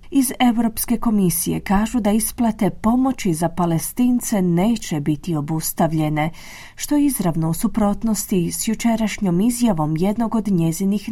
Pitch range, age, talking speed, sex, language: 175-235 Hz, 30-49, 120 wpm, female, Croatian